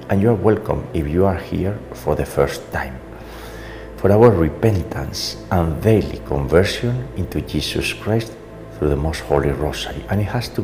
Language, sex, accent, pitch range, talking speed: English, male, Spanish, 80-105 Hz, 170 wpm